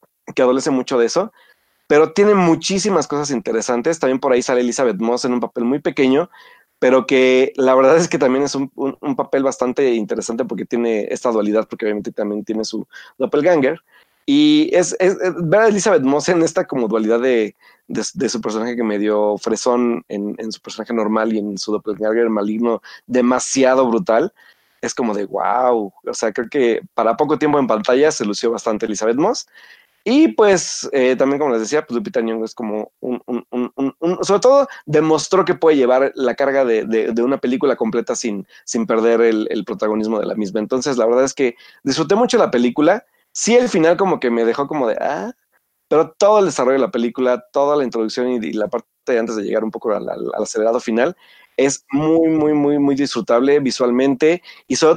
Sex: male